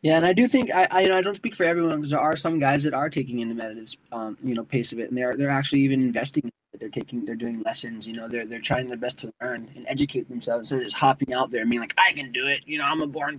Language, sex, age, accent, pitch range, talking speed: English, male, 20-39, American, 125-145 Hz, 325 wpm